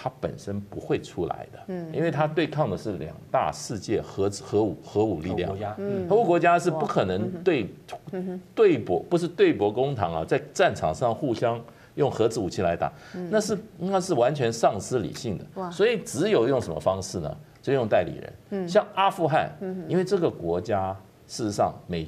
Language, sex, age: Chinese, male, 50-69